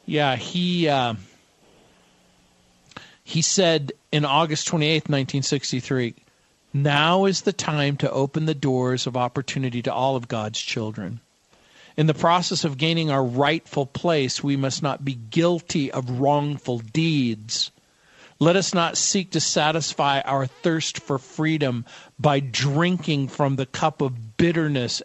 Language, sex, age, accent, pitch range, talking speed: English, male, 50-69, American, 130-155 Hz, 135 wpm